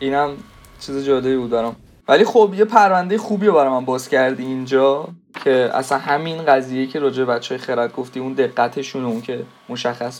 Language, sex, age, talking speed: Persian, male, 20-39, 170 wpm